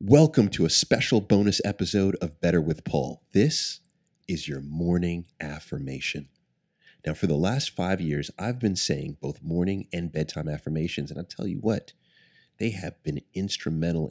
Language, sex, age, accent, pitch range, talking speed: English, male, 30-49, American, 80-105 Hz, 160 wpm